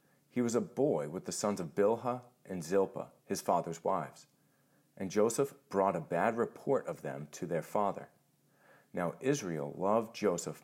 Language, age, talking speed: English, 40-59, 165 wpm